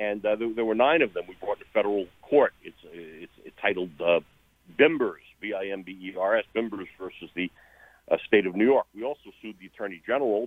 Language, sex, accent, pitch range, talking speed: English, male, American, 95-120 Hz, 190 wpm